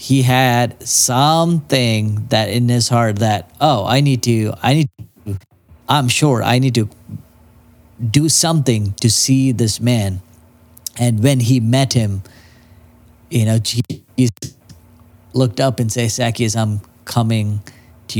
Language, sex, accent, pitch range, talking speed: English, male, American, 105-125 Hz, 140 wpm